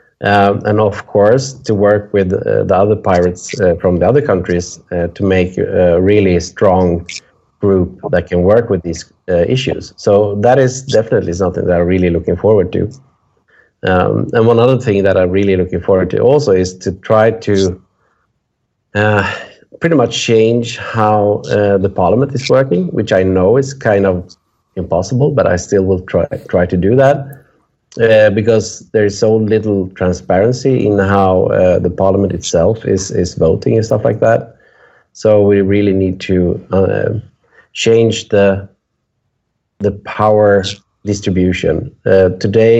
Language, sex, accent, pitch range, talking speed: Dutch, male, Norwegian, 95-115 Hz, 165 wpm